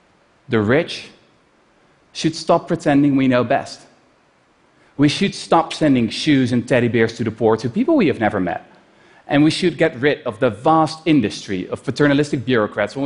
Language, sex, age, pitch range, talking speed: Russian, male, 30-49, 125-160 Hz, 175 wpm